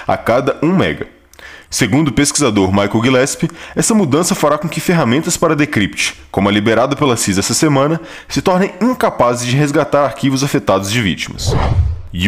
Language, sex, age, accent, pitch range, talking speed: Portuguese, male, 20-39, Brazilian, 115-170 Hz, 165 wpm